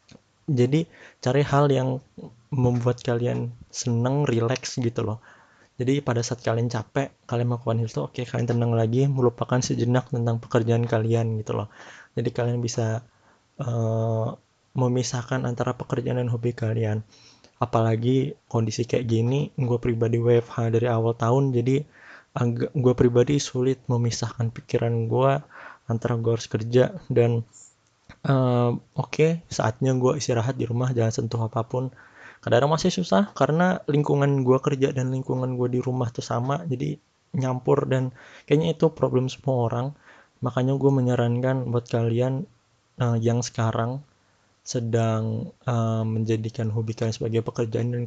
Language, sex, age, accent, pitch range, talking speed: Indonesian, male, 20-39, native, 115-130 Hz, 135 wpm